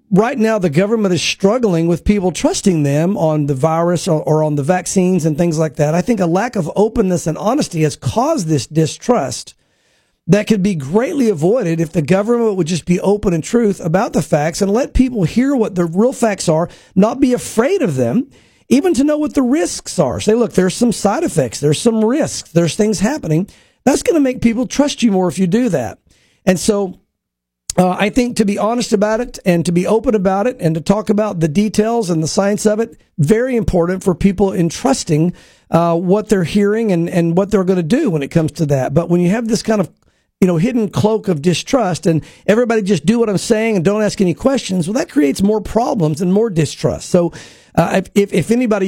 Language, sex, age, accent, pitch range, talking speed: English, male, 50-69, American, 170-220 Hz, 230 wpm